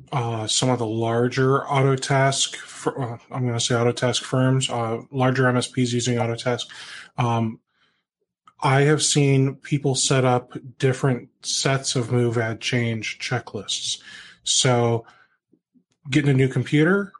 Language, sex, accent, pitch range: English, male, American, 120-135 Hz